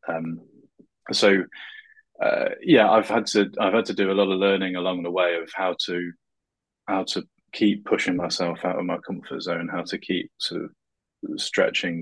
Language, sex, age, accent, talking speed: English, male, 20-39, British, 185 wpm